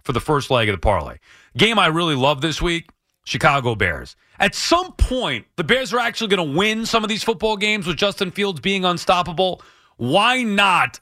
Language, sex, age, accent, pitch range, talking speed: English, male, 30-49, American, 135-200 Hz, 200 wpm